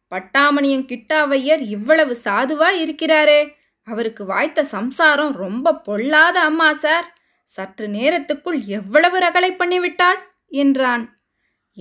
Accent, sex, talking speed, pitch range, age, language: native, female, 85 wpm, 230-310 Hz, 20-39, Tamil